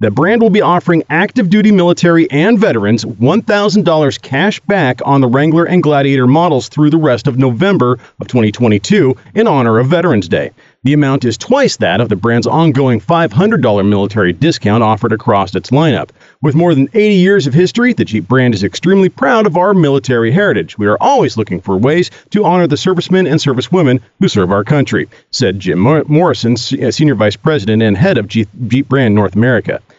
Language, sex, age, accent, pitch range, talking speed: English, male, 40-59, American, 115-175 Hz, 185 wpm